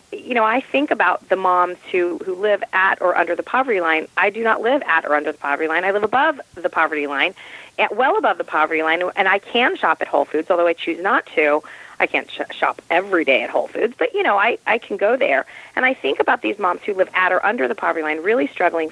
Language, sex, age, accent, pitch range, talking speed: English, female, 40-59, American, 160-210 Hz, 265 wpm